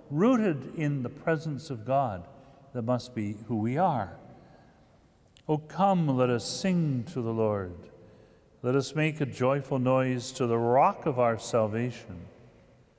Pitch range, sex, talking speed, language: 115-140 Hz, male, 150 wpm, English